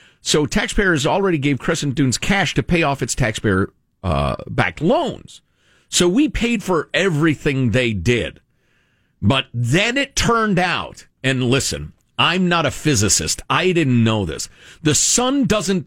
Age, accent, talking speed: 50-69, American, 150 wpm